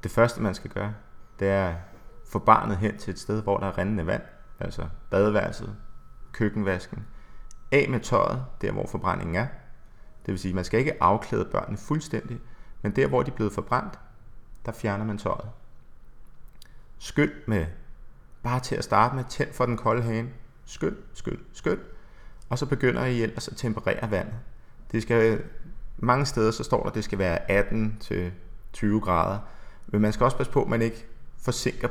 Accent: native